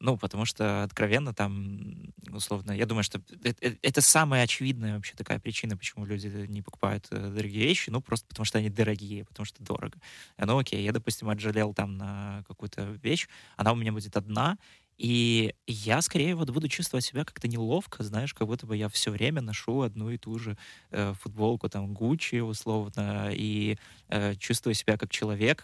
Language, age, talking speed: Russian, 20-39, 185 wpm